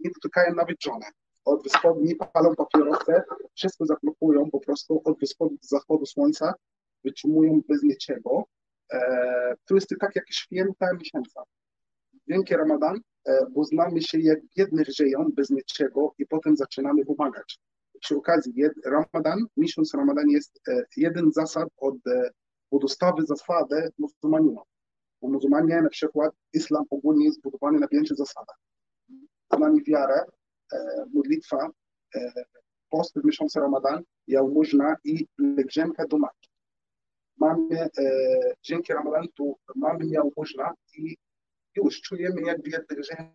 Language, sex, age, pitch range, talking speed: Polish, male, 30-49, 145-205 Hz, 125 wpm